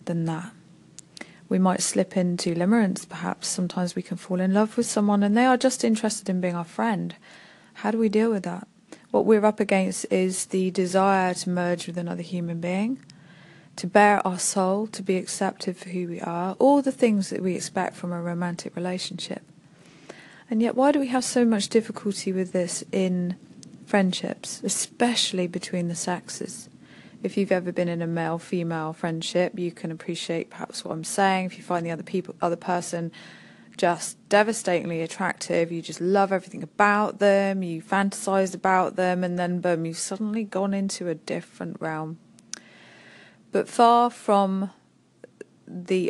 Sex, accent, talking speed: female, British, 170 wpm